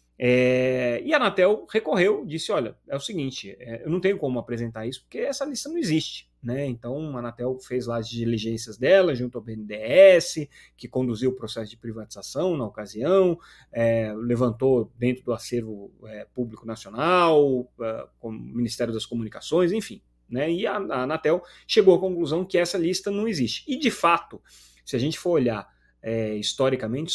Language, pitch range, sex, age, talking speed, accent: Portuguese, 115-175 Hz, male, 30-49, 155 wpm, Brazilian